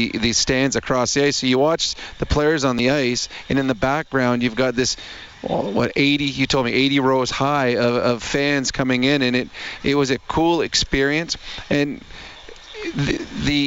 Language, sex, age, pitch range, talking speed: English, male, 40-59, 120-145 Hz, 185 wpm